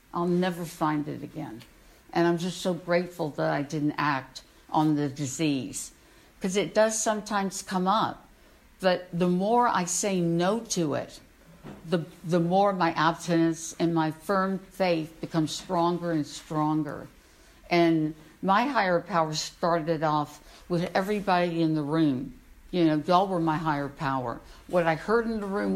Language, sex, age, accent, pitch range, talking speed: English, female, 60-79, American, 155-185 Hz, 160 wpm